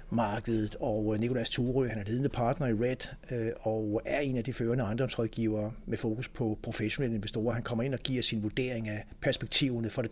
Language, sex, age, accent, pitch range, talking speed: Danish, male, 60-79, native, 110-130 Hz, 195 wpm